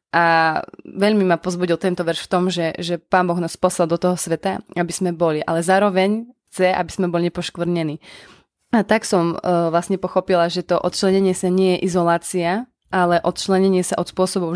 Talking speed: 185 wpm